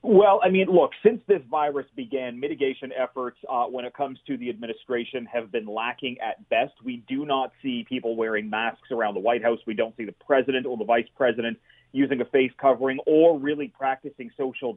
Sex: male